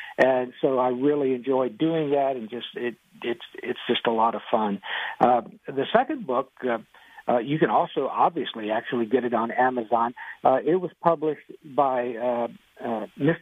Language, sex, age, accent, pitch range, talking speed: English, male, 60-79, American, 125-165 Hz, 170 wpm